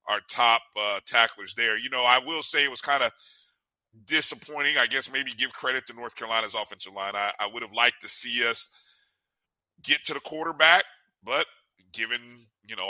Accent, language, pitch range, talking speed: American, English, 115-155 Hz, 190 wpm